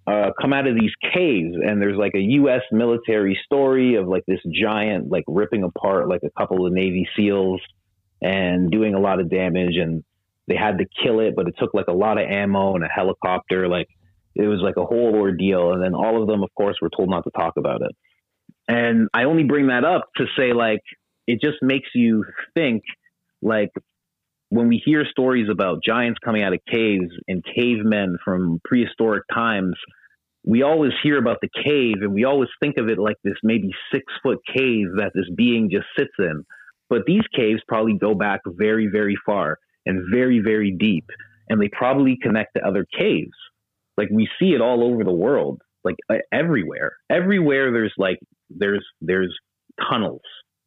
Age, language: 30-49, English